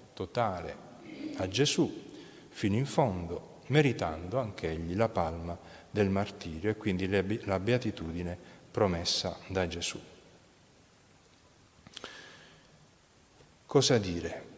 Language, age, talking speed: Italian, 40-59, 85 wpm